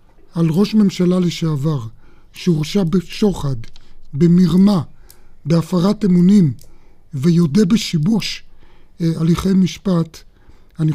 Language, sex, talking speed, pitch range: Hebrew, male, 75 wpm, 160-190 Hz